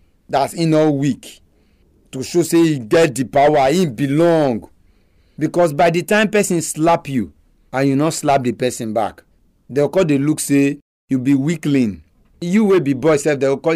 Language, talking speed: English, 185 wpm